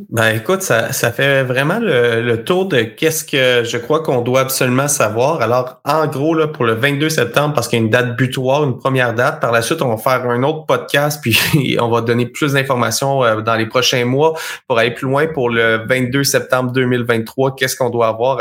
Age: 20-39